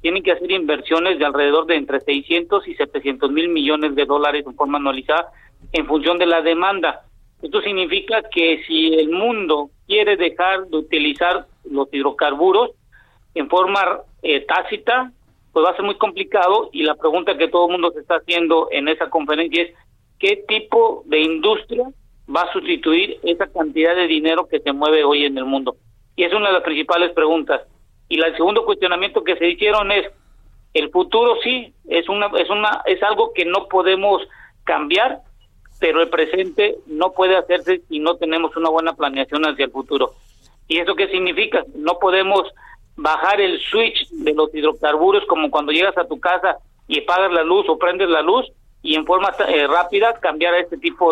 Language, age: Spanish, 40-59